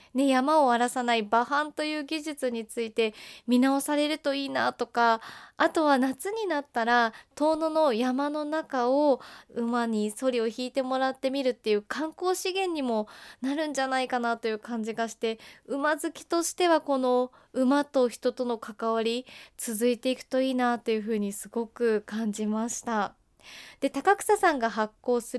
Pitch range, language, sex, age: 230-295 Hz, Japanese, female, 20-39